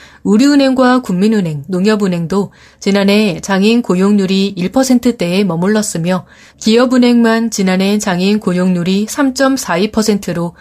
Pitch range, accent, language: 185-240 Hz, native, Korean